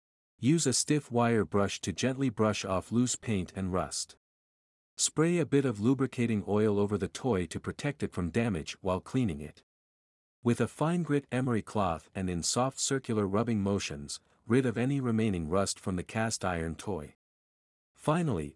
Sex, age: male, 50-69